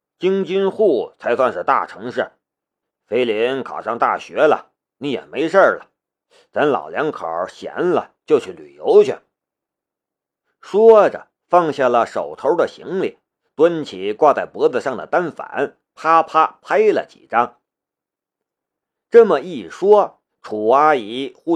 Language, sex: Chinese, male